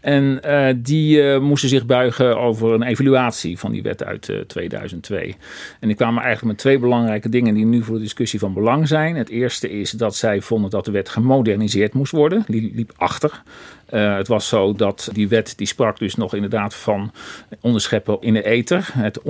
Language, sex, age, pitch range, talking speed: Dutch, male, 40-59, 105-130 Hz, 205 wpm